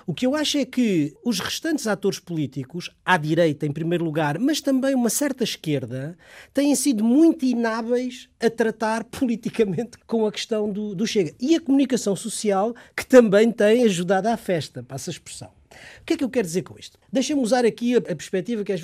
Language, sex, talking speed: Portuguese, male, 200 wpm